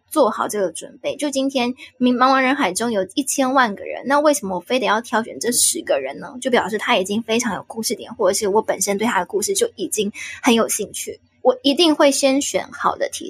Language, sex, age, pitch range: Chinese, female, 10-29, 205-265 Hz